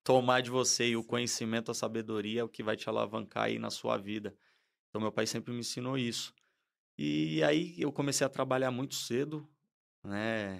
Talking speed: 185 wpm